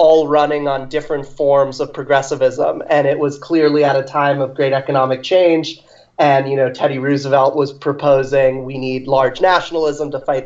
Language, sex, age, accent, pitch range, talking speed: English, male, 30-49, American, 135-155 Hz, 180 wpm